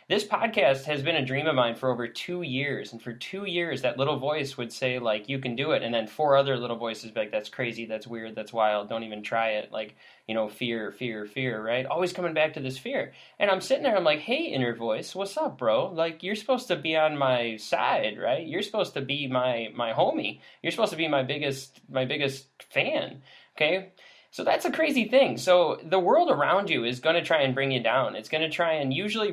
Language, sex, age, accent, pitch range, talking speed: English, male, 10-29, American, 125-200 Hz, 245 wpm